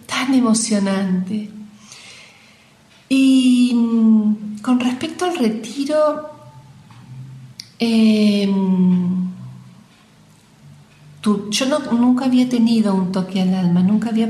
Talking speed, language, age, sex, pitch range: 85 wpm, Spanish, 40-59, female, 185-245 Hz